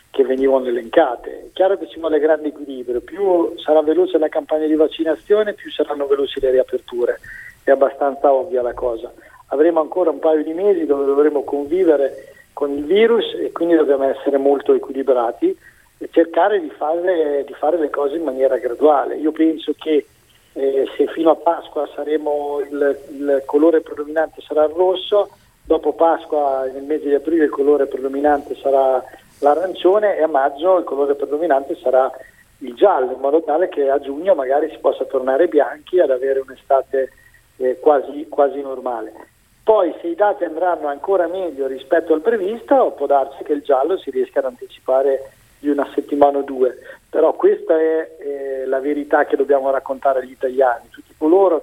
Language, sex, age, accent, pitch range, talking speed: Italian, male, 50-69, native, 140-175 Hz, 170 wpm